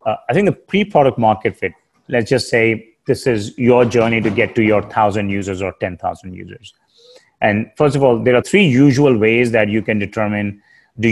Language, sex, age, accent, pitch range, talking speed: English, male, 30-49, Indian, 100-125 Hz, 200 wpm